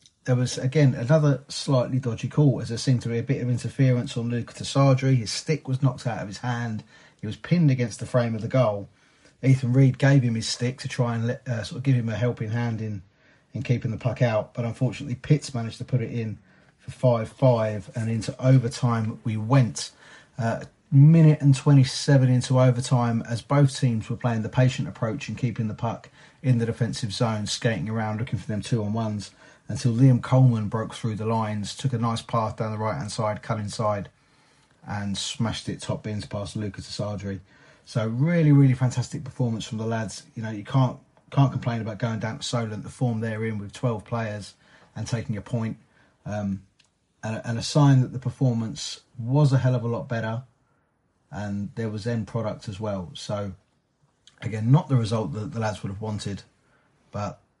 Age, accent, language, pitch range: 30-49, British, English, 110-130 Hz